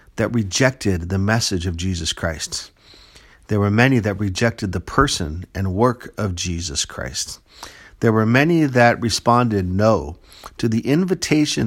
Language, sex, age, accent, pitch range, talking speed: English, male, 50-69, American, 95-120 Hz, 145 wpm